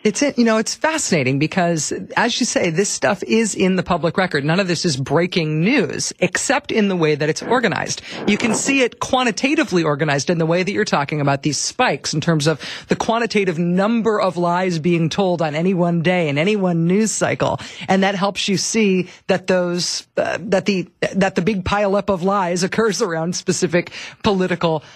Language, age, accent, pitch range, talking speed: English, 40-59, American, 175-230 Hz, 200 wpm